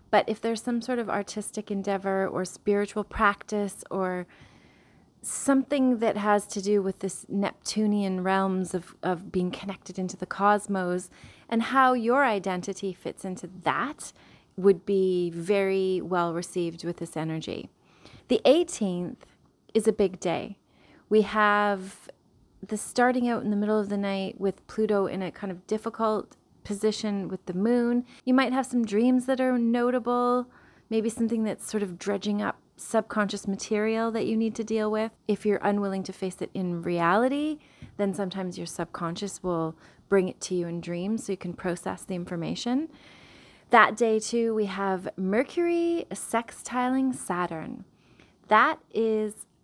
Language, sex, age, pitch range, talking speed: English, female, 30-49, 185-225 Hz, 155 wpm